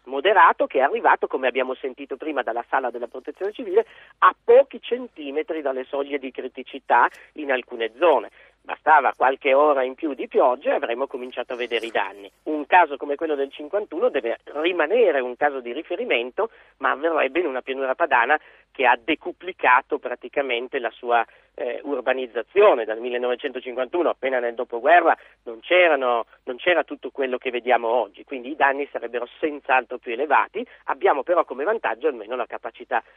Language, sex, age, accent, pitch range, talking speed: Italian, male, 40-59, native, 130-180 Hz, 165 wpm